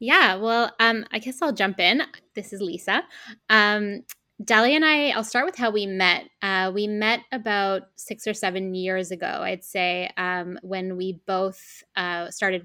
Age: 10-29